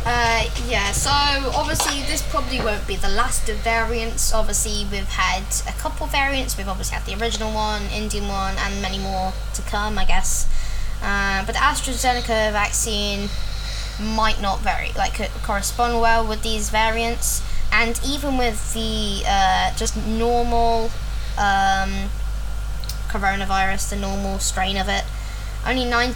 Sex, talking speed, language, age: female, 145 wpm, English, 10-29